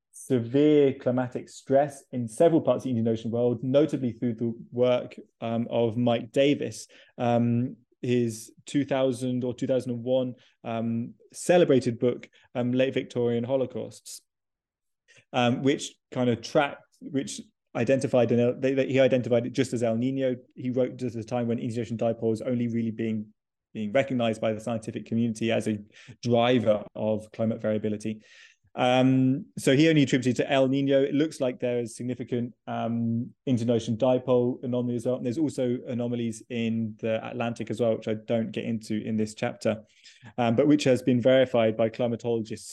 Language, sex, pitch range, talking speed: English, male, 115-130 Hz, 165 wpm